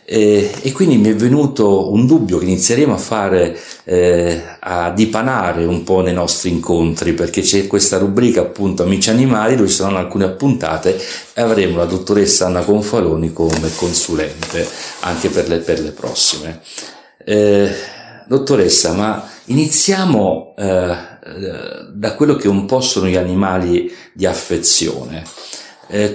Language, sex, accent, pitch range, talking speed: Italian, male, native, 85-100 Hz, 140 wpm